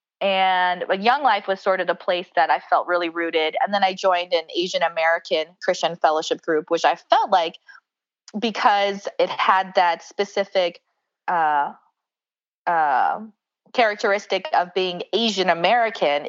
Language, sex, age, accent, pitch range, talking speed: English, female, 20-39, American, 170-200 Hz, 135 wpm